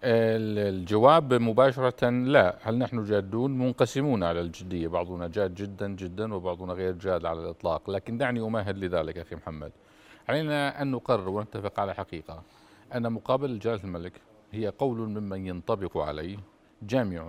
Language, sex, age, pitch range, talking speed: Arabic, male, 50-69, 90-120 Hz, 140 wpm